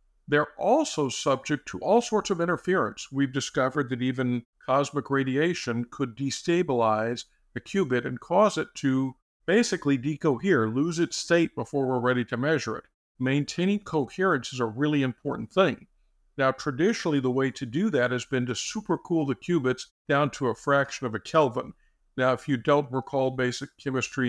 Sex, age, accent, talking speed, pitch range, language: male, 50-69, American, 165 wpm, 125-150 Hz, English